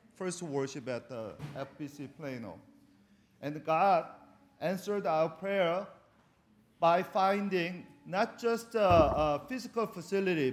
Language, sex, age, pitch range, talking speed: English, male, 40-59, 170-215 Hz, 110 wpm